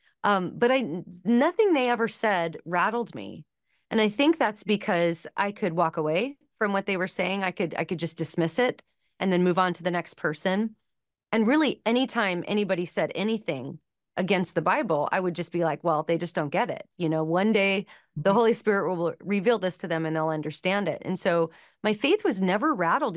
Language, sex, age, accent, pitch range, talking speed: English, female, 30-49, American, 170-220 Hz, 210 wpm